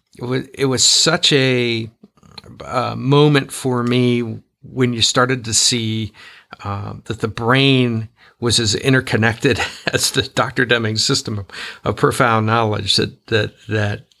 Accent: American